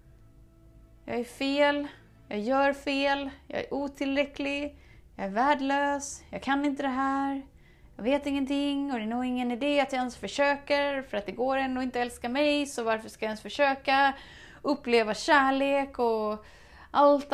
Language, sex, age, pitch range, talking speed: Swedish, female, 30-49, 210-285 Hz, 170 wpm